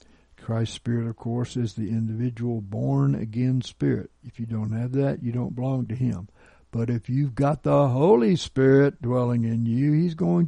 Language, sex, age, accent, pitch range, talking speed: English, male, 60-79, American, 110-145 Hz, 180 wpm